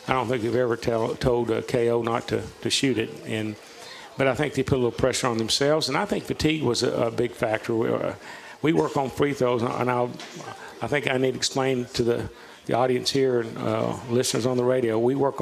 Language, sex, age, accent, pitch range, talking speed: English, male, 50-69, American, 115-135 Hz, 240 wpm